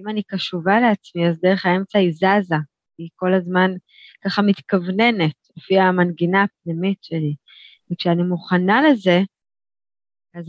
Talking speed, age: 125 wpm, 20-39